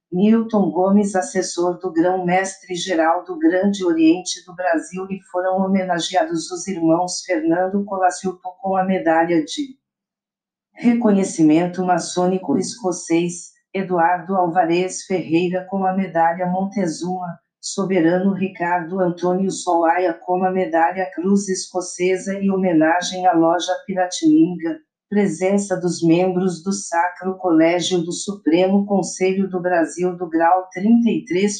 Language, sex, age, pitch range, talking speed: Portuguese, female, 50-69, 170-190 Hz, 115 wpm